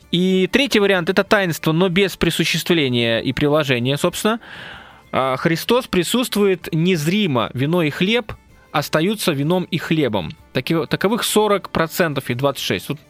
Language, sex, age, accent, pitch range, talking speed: Russian, male, 20-39, native, 140-185 Hz, 125 wpm